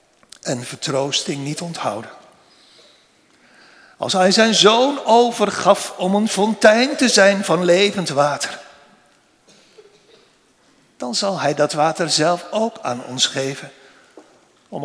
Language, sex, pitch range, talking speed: Dutch, male, 170-215 Hz, 115 wpm